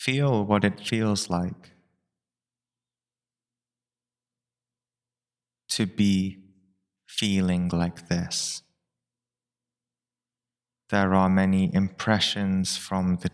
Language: English